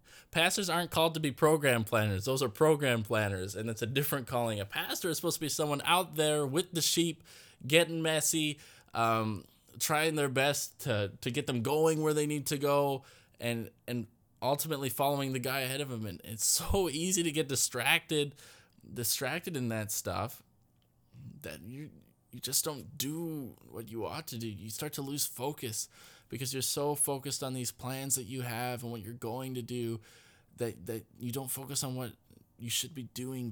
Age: 20-39